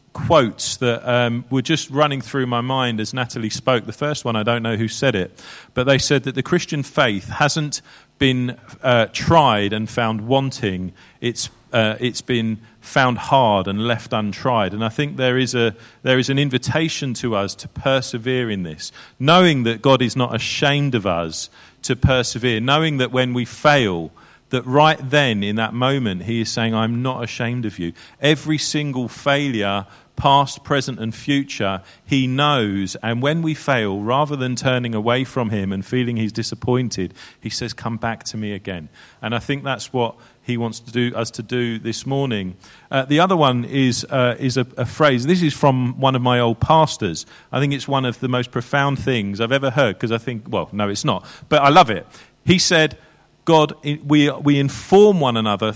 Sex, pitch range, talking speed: male, 110-140 Hz, 195 wpm